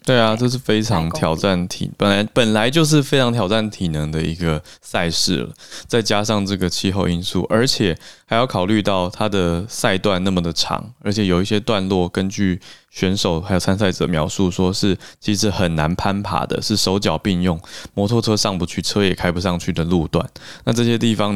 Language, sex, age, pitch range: Chinese, male, 20-39, 85-105 Hz